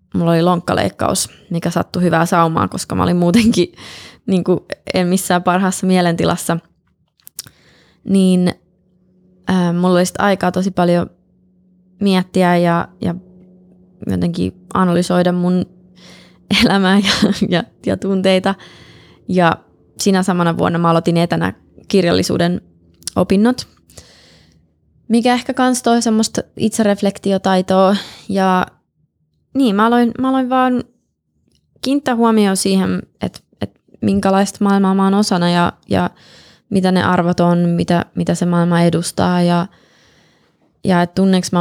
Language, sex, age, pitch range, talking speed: English, female, 20-39, 175-195 Hz, 115 wpm